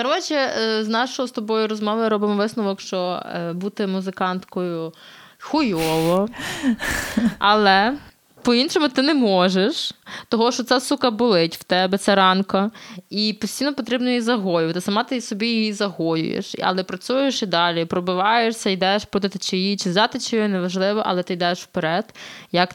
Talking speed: 140 wpm